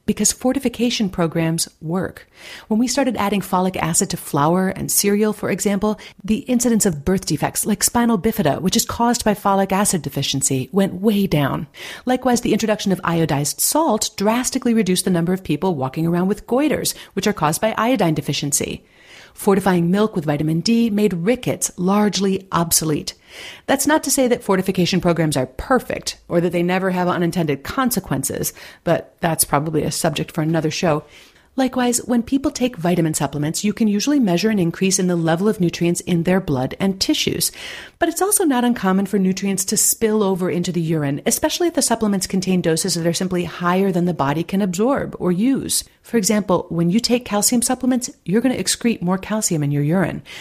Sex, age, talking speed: female, 40-59, 185 wpm